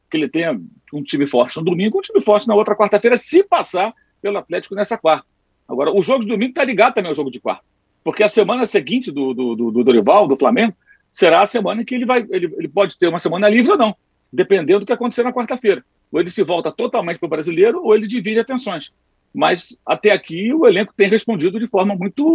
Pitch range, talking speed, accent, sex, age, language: 175-245 Hz, 235 wpm, Brazilian, male, 50-69, Portuguese